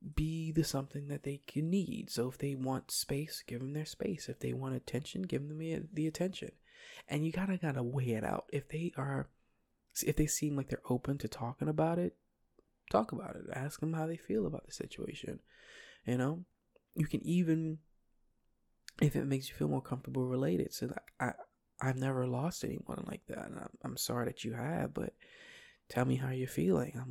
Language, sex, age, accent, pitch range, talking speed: English, male, 20-39, American, 120-160 Hz, 200 wpm